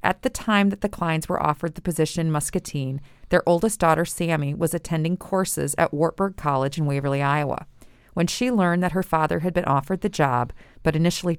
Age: 40-59